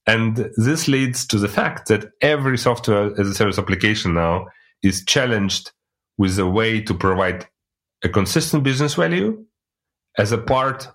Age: 30-49